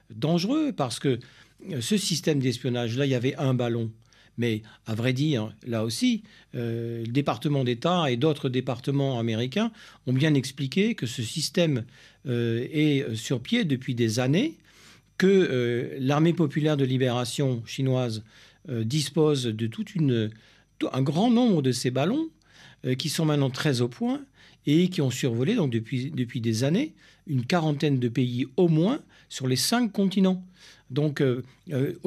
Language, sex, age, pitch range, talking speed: French, male, 50-69, 125-170 Hz, 155 wpm